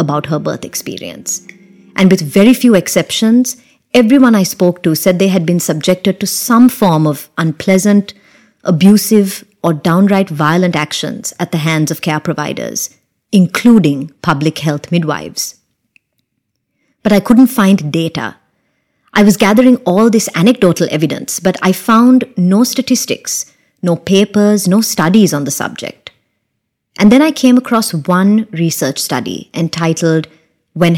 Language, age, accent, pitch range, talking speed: English, 30-49, Indian, 160-210 Hz, 140 wpm